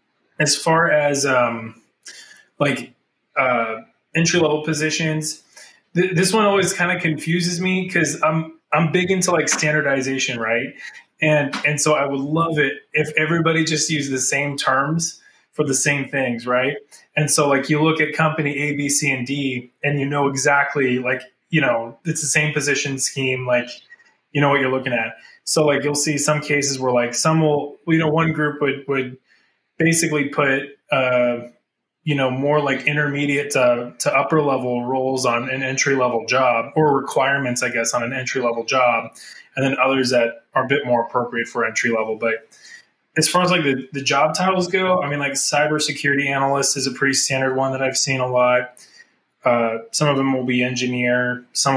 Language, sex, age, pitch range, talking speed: English, male, 20-39, 125-150 Hz, 190 wpm